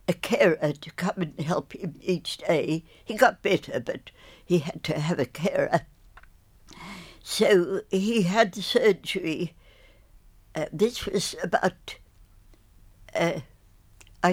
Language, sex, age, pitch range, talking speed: English, female, 60-79, 155-200 Hz, 120 wpm